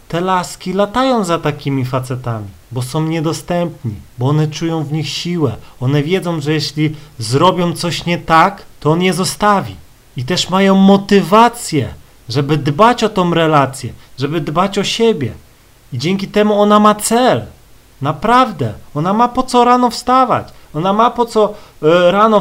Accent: native